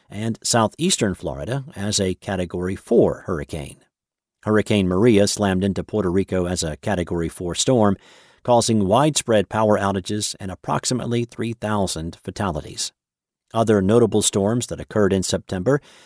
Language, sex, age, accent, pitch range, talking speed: English, male, 50-69, American, 95-125 Hz, 125 wpm